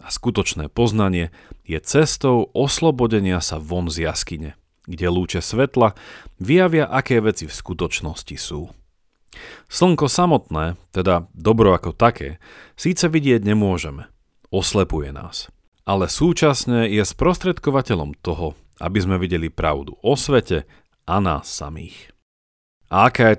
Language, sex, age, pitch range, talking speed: Slovak, male, 40-59, 85-120 Hz, 120 wpm